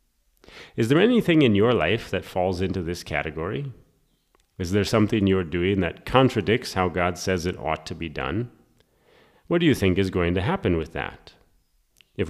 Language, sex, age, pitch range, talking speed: English, male, 30-49, 85-115 Hz, 180 wpm